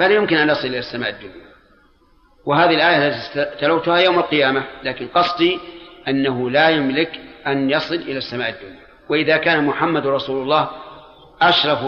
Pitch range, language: 145-175 Hz, Arabic